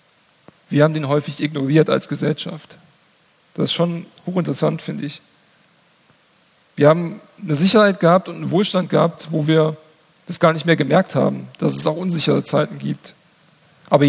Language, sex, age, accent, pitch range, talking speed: German, male, 40-59, German, 155-180 Hz, 160 wpm